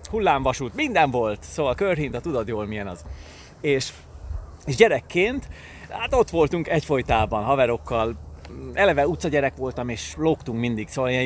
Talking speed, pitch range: 135 wpm, 115-165 Hz